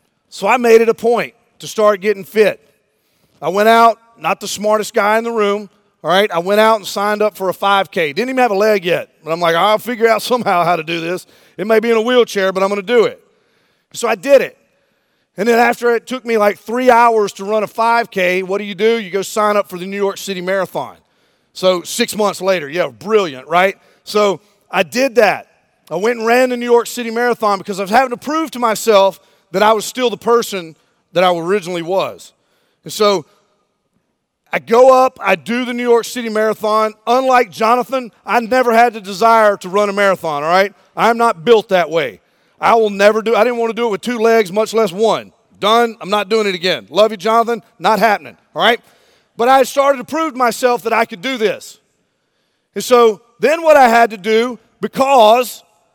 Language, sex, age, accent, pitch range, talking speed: English, male, 30-49, American, 200-235 Hz, 225 wpm